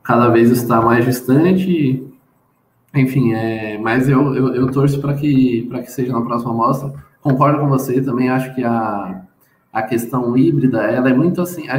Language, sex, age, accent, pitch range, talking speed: Portuguese, male, 20-39, Brazilian, 120-145 Hz, 175 wpm